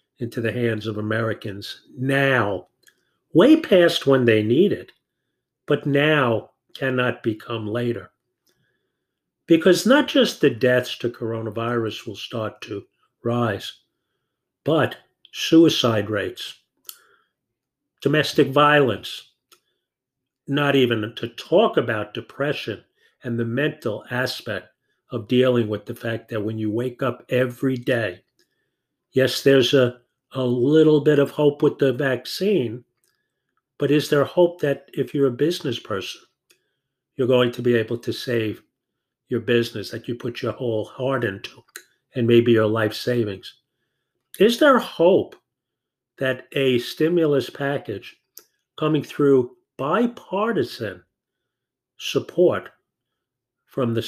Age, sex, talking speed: 50-69, male, 120 wpm